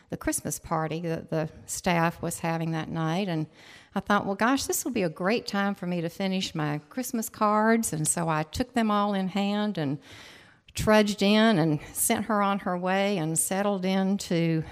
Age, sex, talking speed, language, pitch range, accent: 50-69, female, 200 wpm, English, 160-200 Hz, American